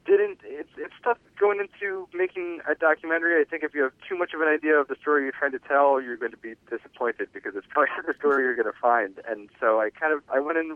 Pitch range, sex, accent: 100-150 Hz, male, American